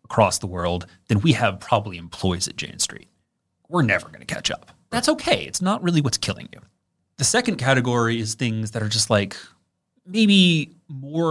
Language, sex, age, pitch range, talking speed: English, male, 30-49, 105-130 Hz, 190 wpm